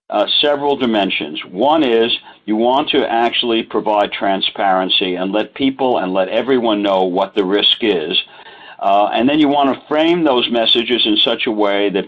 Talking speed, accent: 180 wpm, American